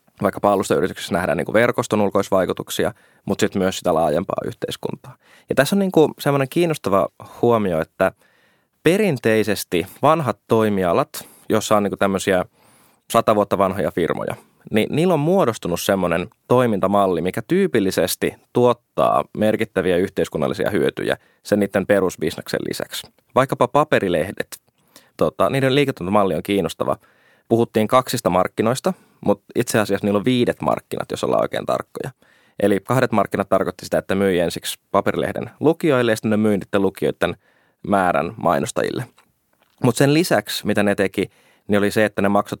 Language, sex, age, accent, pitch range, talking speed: Finnish, male, 20-39, native, 100-125 Hz, 140 wpm